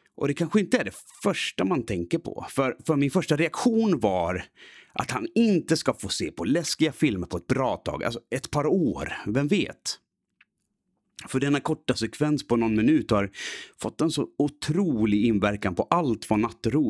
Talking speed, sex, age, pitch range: 185 wpm, male, 30-49, 110-165 Hz